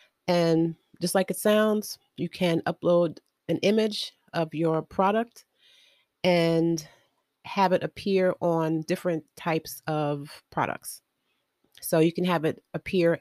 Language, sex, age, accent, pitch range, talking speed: English, female, 30-49, American, 155-190 Hz, 125 wpm